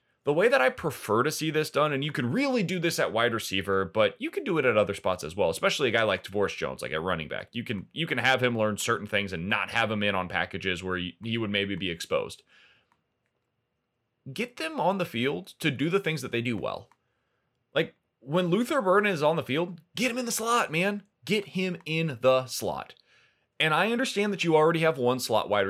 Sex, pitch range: male, 115-185 Hz